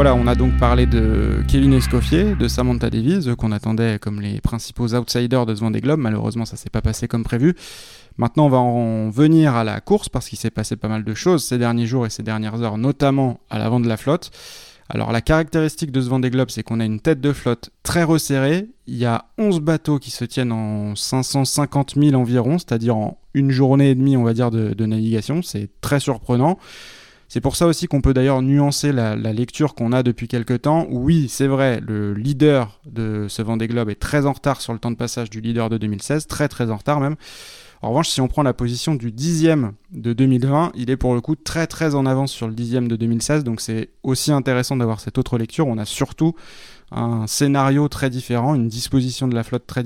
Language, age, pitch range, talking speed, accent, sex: French, 20-39, 115-140 Hz, 225 wpm, French, male